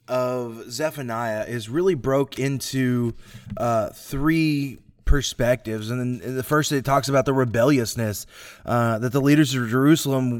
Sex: male